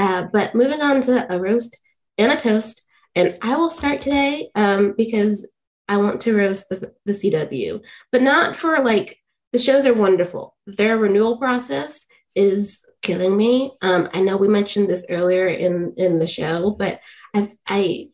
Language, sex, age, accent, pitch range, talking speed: English, female, 20-39, American, 185-240 Hz, 170 wpm